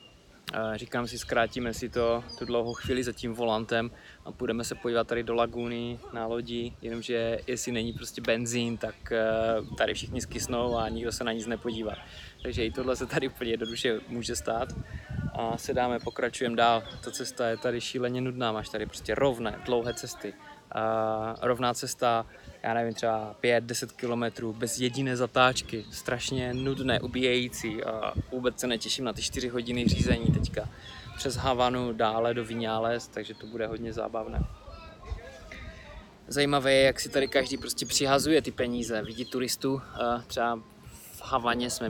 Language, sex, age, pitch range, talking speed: Czech, male, 20-39, 115-125 Hz, 160 wpm